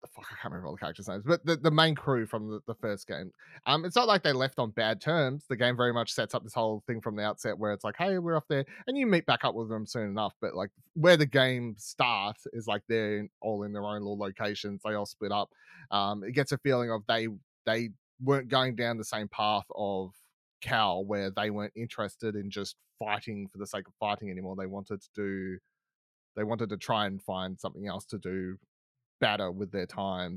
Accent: Australian